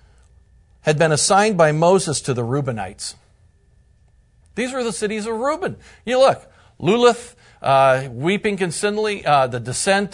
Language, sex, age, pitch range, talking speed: English, male, 50-69, 150-220 Hz, 130 wpm